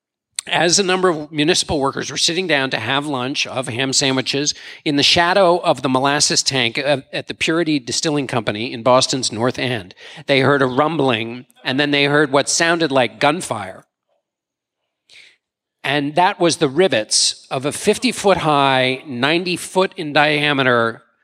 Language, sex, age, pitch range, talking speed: English, male, 40-59, 130-170 Hz, 145 wpm